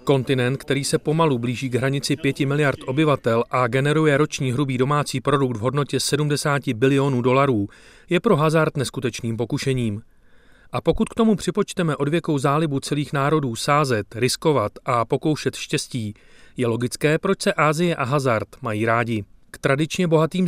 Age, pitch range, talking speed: 40-59, 125-155 Hz, 150 wpm